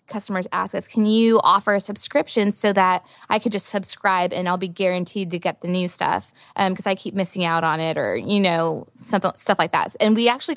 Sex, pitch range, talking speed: female, 175-205 Hz, 235 wpm